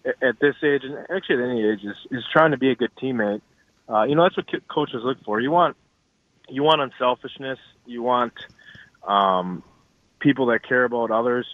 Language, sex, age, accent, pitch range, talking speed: English, male, 20-39, American, 115-140 Hz, 190 wpm